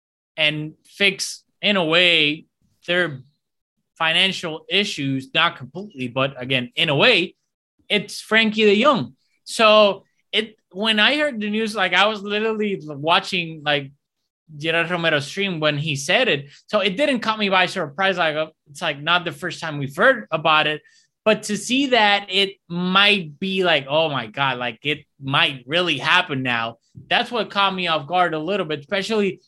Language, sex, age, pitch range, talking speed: English, male, 20-39, 155-200 Hz, 170 wpm